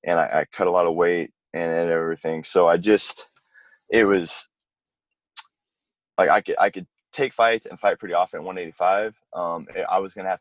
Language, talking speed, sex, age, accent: English, 215 wpm, male, 20-39, American